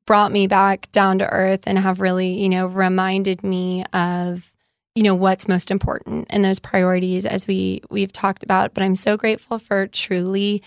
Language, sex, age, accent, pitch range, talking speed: English, female, 20-39, American, 185-205 Hz, 185 wpm